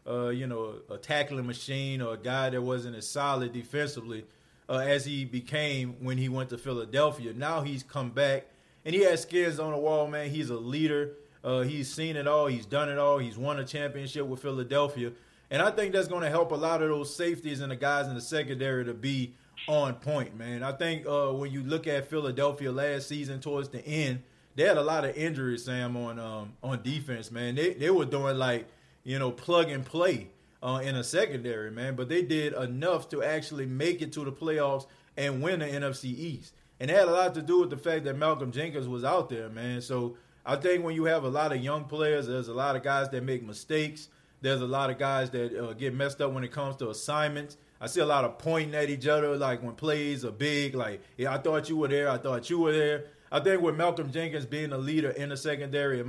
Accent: American